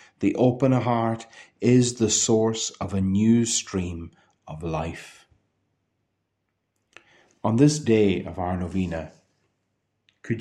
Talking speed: 110 wpm